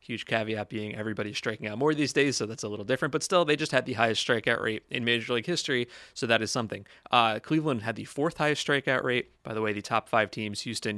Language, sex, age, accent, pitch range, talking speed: English, male, 30-49, American, 110-135 Hz, 250 wpm